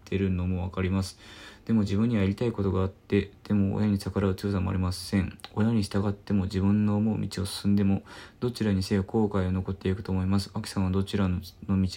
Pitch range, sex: 100-110 Hz, male